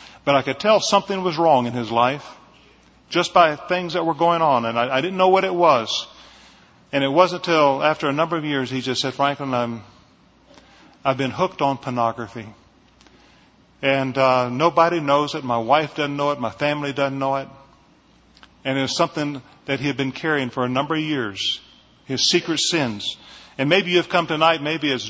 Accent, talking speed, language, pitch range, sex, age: American, 195 wpm, English, 135-165 Hz, male, 40-59